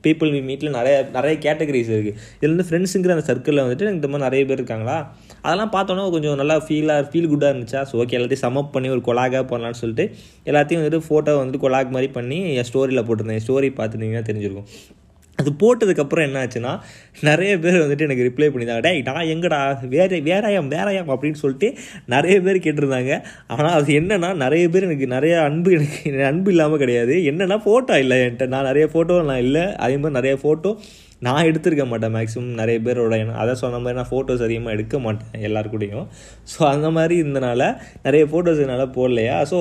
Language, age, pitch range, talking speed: Tamil, 20-39, 120-155 Hz, 175 wpm